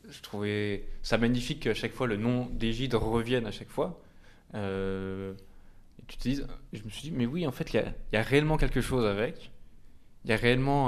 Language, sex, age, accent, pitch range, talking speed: French, male, 20-39, French, 105-130 Hz, 215 wpm